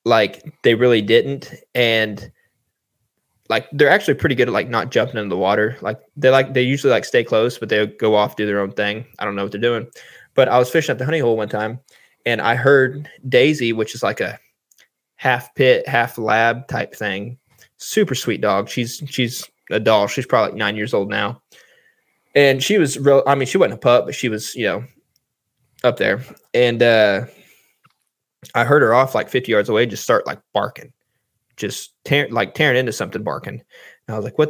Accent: American